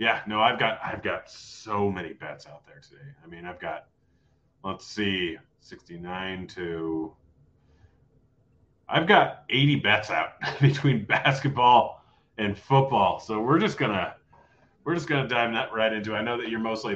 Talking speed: 165 wpm